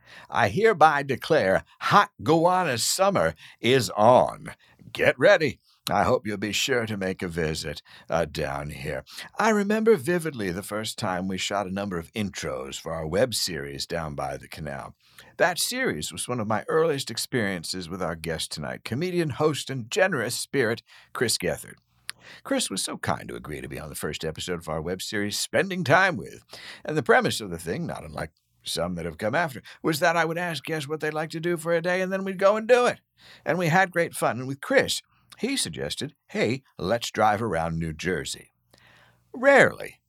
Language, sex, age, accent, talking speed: English, male, 60-79, American, 195 wpm